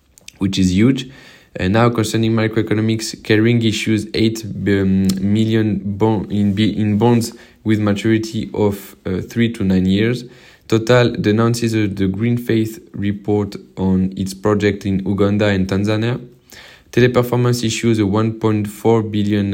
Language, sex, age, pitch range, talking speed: English, male, 20-39, 100-115 Hz, 125 wpm